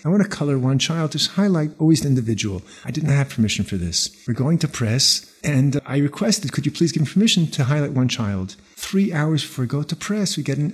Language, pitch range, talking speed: English, 115-155 Hz, 245 wpm